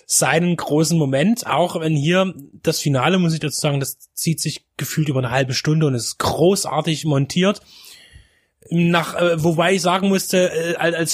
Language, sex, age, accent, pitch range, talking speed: German, male, 30-49, German, 155-185 Hz, 170 wpm